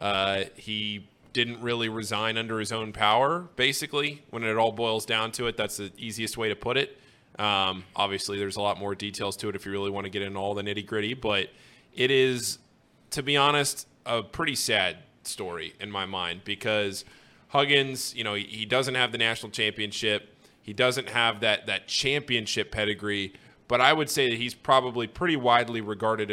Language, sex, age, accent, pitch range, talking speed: English, male, 20-39, American, 105-120 Hz, 190 wpm